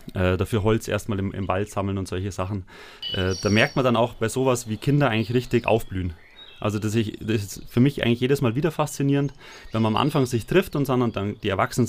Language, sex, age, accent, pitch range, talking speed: German, male, 30-49, German, 105-120 Hz, 235 wpm